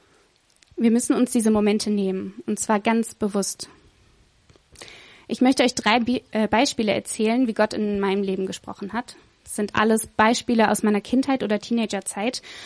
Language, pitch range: German, 205-235 Hz